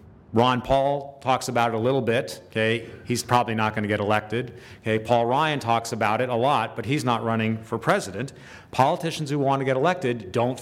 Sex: male